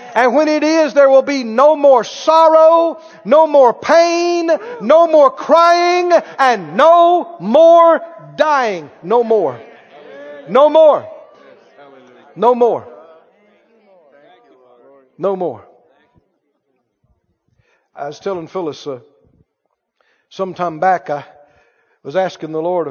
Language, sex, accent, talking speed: English, male, American, 105 wpm